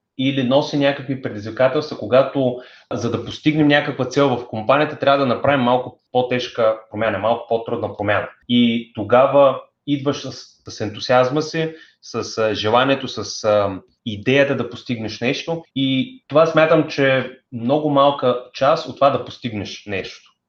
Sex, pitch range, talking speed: male, 115-140 Hz, 140 wpm